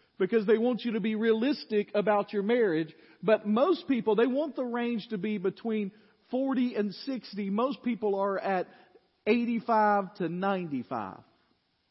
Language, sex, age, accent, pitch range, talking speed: English, male, 40-59, American, 160-230 Hz, 150 wpm